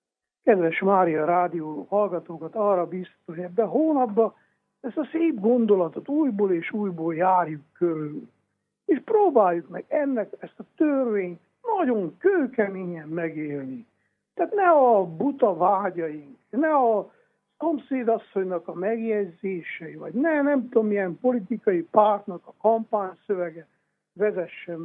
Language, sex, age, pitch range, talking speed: Hungarian, male, 60-79, 180-250 Hz, 120 wpm